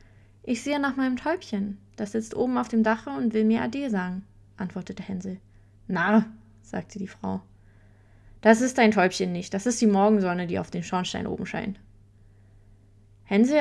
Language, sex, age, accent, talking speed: German, female, 20-39, German, 170 wpm